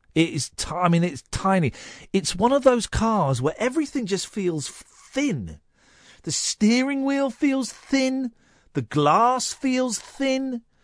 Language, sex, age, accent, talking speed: English, male, 50-69, British, 140 wpm